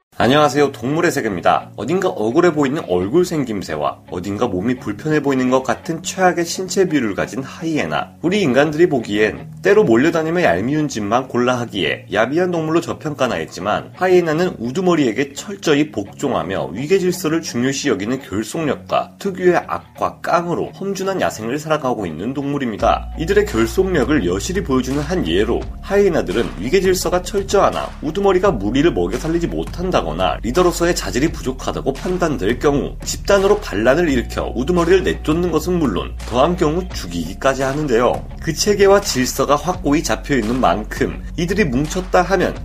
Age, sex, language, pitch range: 30-49, male, Korean, 130-185 Hz